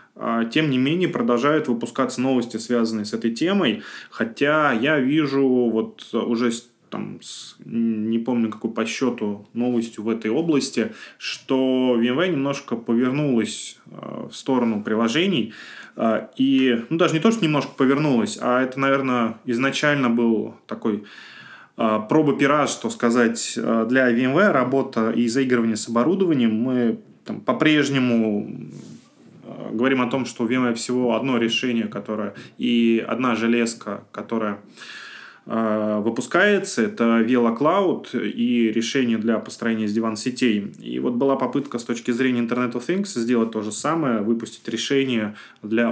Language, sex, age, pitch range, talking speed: Russian, male, 20-39, 115-130 Hz, 140 wpm